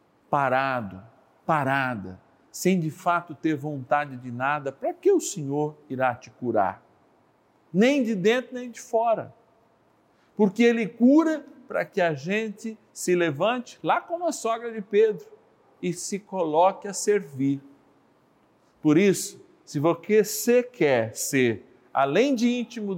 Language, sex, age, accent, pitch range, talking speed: Portuguese, male, 50-69, Brazilian, 120-170 Hz, 135 wpm